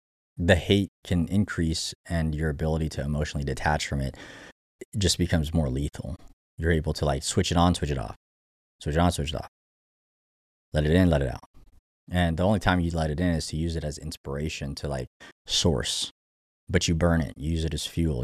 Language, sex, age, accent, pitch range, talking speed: English, male, 20-39, American, 75-90 Hz, 205 wpm